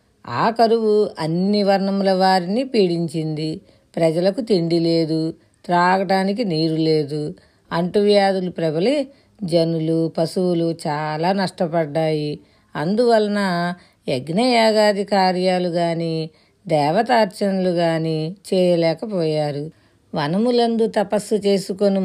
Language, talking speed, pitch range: Telugu, 75 wpm, 165-205 Hz